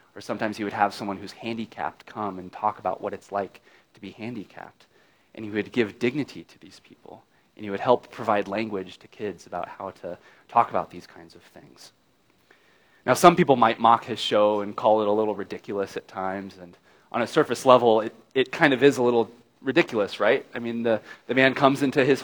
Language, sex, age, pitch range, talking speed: English, male, 30-49, 105-130 Hz, 215 wpm